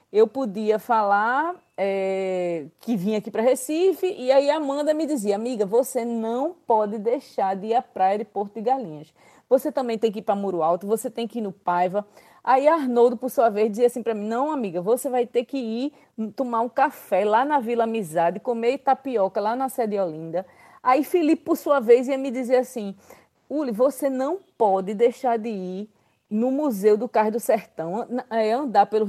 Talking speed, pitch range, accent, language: 195 wpm, 215-290 Hz, Brazilian, Portuguese